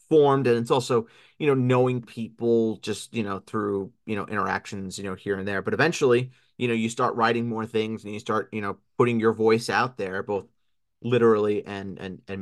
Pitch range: 95-120 Hz